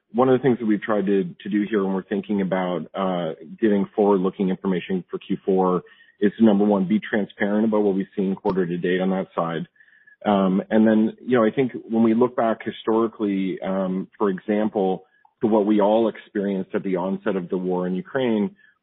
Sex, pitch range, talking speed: male, 95-110 Hz, 210 wpm